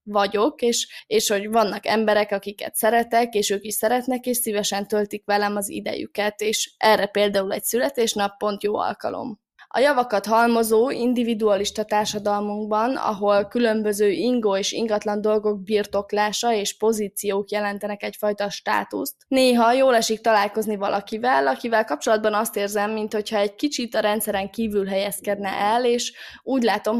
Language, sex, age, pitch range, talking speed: Hungarian, female, 20-39, 205-225 Hz, 140 wpm